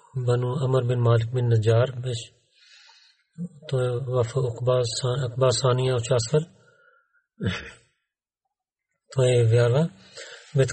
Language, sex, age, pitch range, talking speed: Bulgarian, male, 40-59, 125-150 Hz, 100 wpm